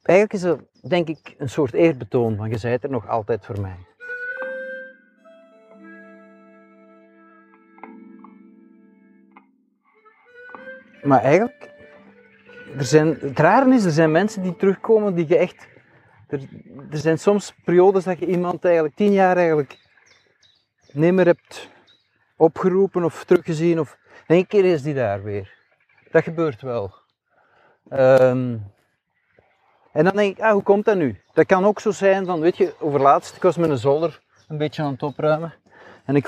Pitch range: 135-195 Hz